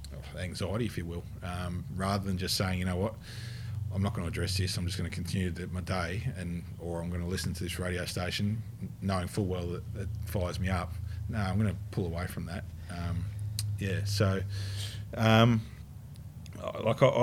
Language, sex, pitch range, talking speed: English, male, 90-110 Hz, 200 wpm